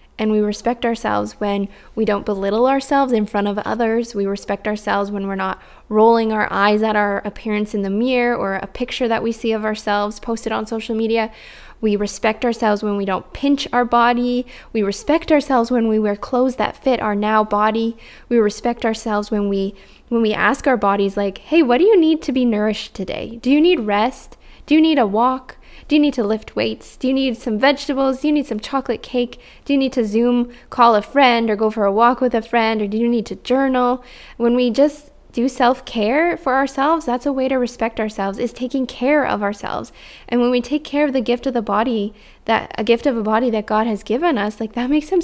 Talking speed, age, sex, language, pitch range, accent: 230 wpm, 10-29, female, English, 215-255 Hz, American